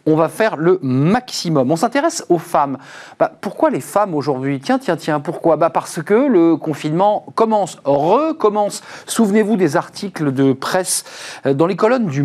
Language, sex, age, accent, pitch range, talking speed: French, male, 40-59, French, 140-190 Hz, 165 wpm